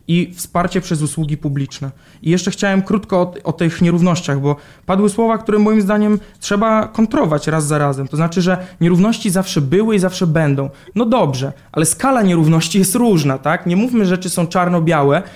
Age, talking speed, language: 20-39, 190 wpm, Polish